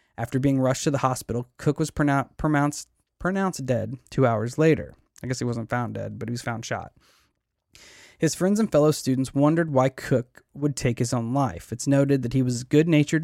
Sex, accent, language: male, American, English